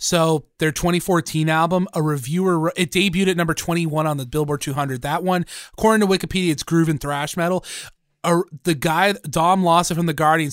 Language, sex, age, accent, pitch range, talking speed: English, male, 20-39, American, 145-175 Hz, 180 wpm